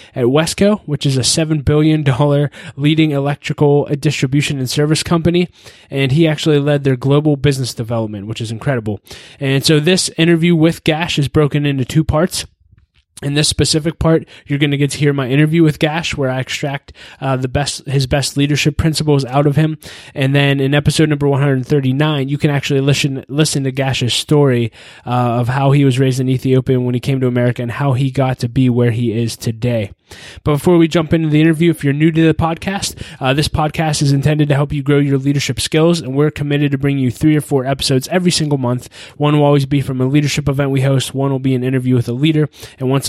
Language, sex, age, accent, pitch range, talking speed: English, male, 20-39, American, 130-155 Hz, 220 wpm